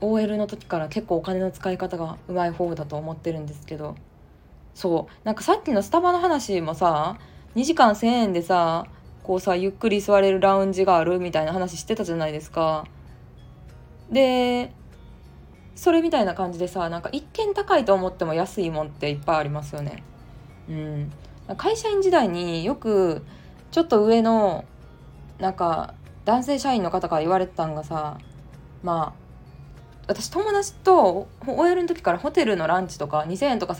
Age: 20-39